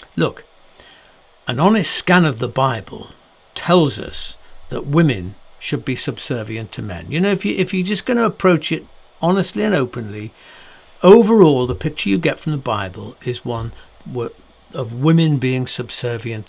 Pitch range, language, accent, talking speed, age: 125-175 Hz, English, British, 160 wpm, 60-79